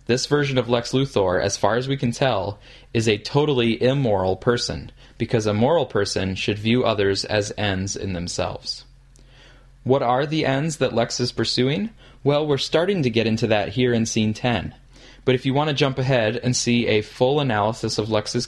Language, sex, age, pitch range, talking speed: English, male, 20-39, 105-130 Hz, 195 wpm